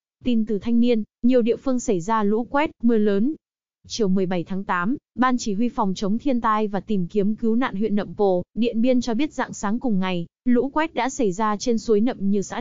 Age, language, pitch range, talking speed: 20-39, Vietnamese, 200-240 Hz, 240 wpm